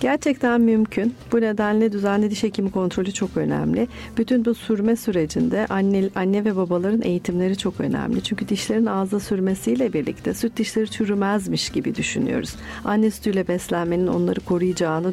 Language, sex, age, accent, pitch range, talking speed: Turkish, female, 50-69, native, 175-225 Hz, 145 wpm